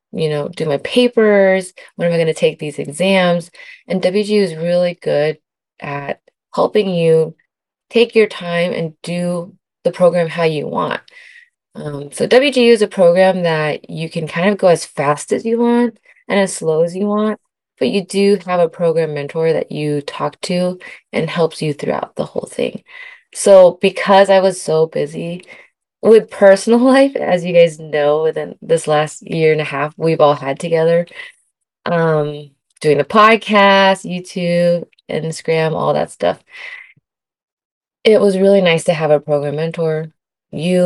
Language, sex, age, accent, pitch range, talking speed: English, female, 20-39, American, 160-200 Hz, 170 wpm